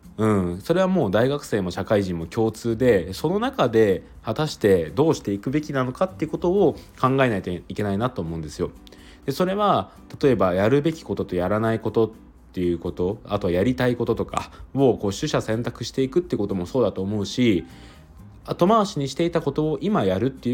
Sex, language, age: male, Japanese, 20-39